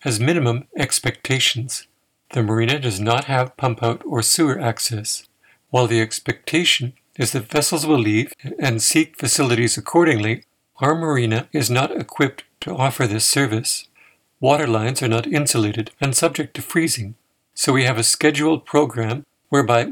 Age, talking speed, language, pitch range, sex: 60-79, 150 wpm, English, 115-150 Hz, male